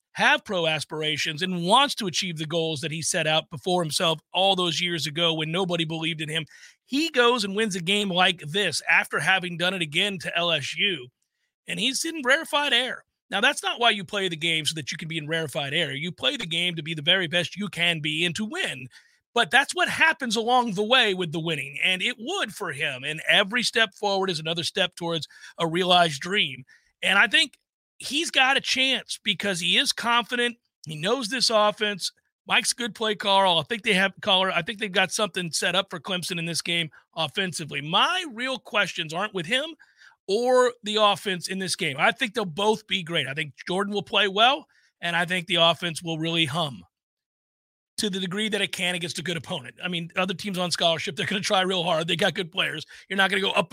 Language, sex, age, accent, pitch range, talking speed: English, male, 40-59, American, 170-215 Hz, 225 wpm